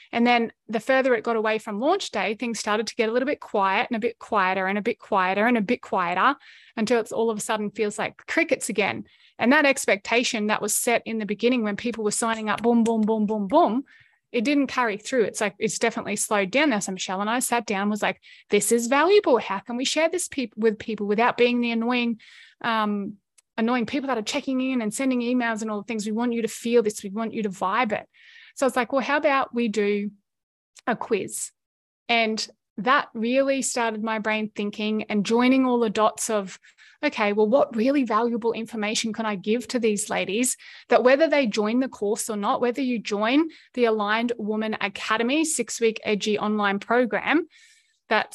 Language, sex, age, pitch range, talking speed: English, female, 20-39, 210-250 Hz, 215 wpm